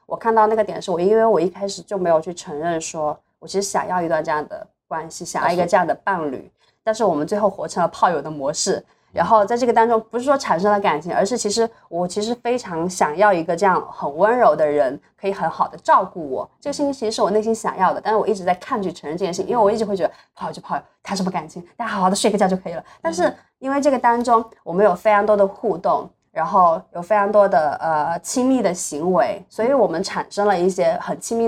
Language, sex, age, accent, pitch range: Chinese, female, 20-39, native, 185-230 Hz